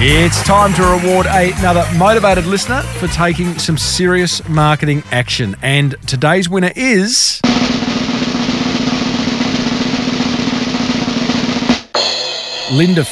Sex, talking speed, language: male, 80 wpm, English